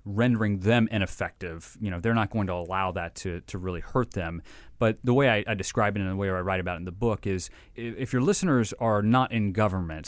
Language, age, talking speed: English, 30-49, 245 wpm